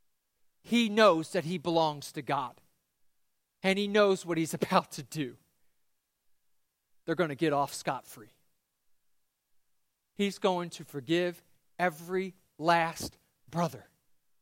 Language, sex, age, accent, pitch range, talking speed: English, male, 40-59, American, 160-205 Hz, 115 wpm